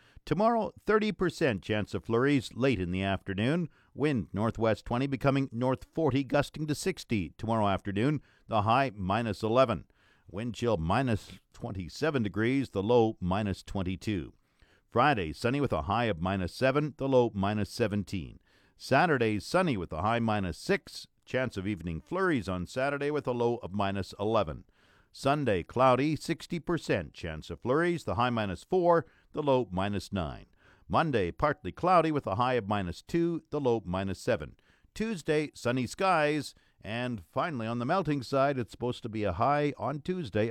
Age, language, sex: 50-69, English, male